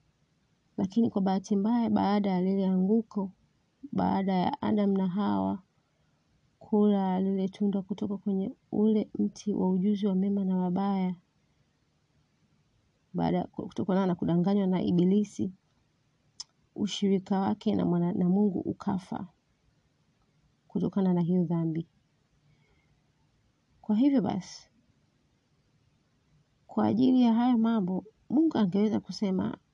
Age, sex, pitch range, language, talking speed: 30-49, female, 180-210 Hz, Swahili, 105 wpm